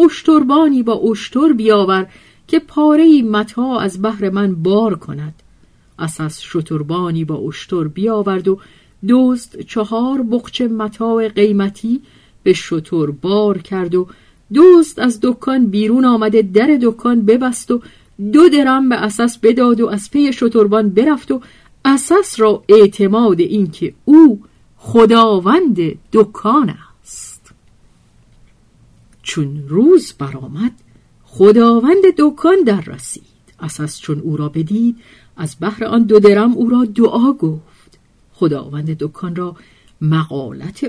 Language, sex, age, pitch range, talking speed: Persian, female, 50-69, 175-245 Hz, 120 wpm